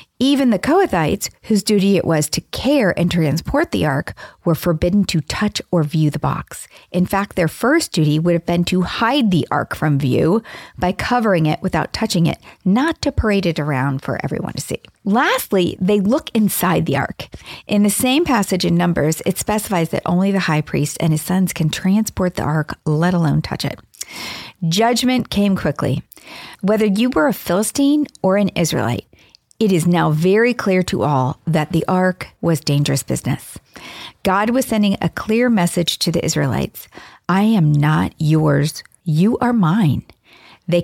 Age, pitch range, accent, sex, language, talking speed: 40-59, 160-210 Hz, American, female, English, 180 wpm